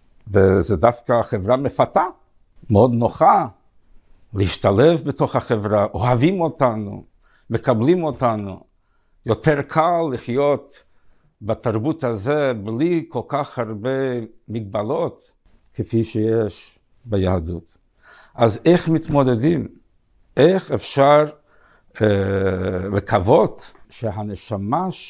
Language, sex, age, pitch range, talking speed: Hebrew, male, 60-79, 100-140 Hz, 80 wpm